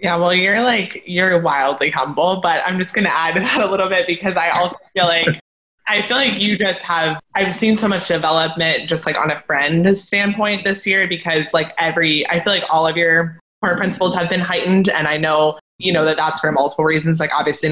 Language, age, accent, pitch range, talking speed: English, 20-39, American, 155-185 Hz, 225 wpm